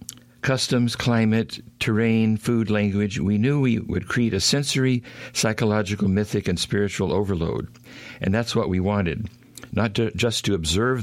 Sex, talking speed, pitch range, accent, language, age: male, 145 wpm, 100-120 Hz, American, English, 60-79